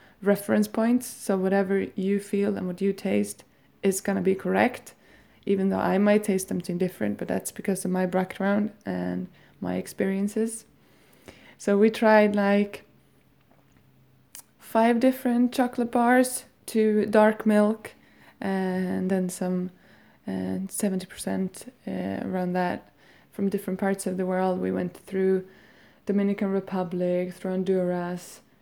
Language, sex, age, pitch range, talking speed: English, female, 20-39, 165-195 Hz, 130 wpm